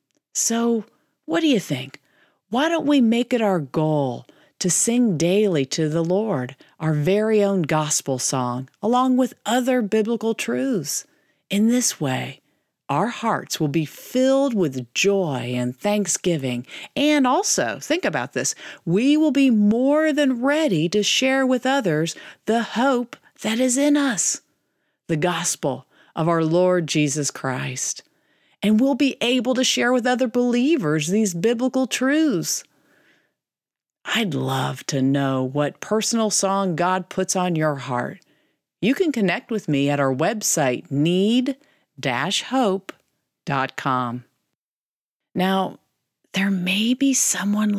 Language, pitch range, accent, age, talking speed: English, 155-250 Hz, American, 40-59, 135 wpm